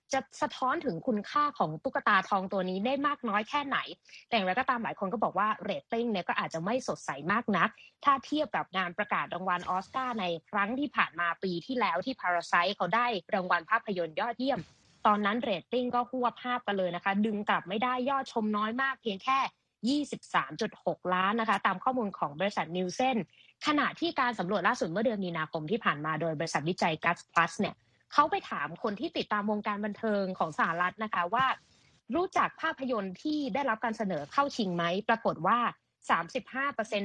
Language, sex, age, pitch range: Thai, female, 20-39, 190-260 Hz